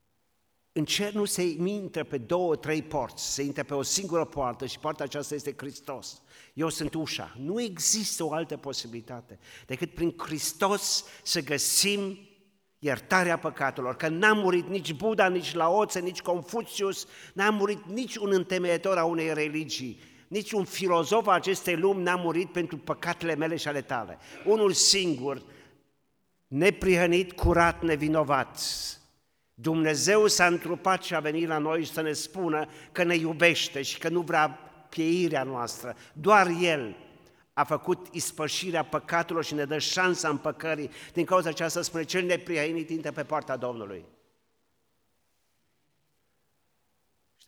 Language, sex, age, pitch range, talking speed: Romanian, male, 50-69, 135-180 Hz, 145 wpm